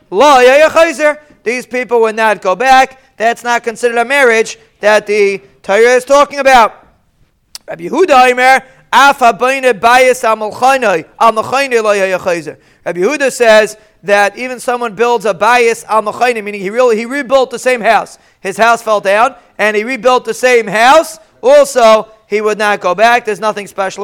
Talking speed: 130 wpm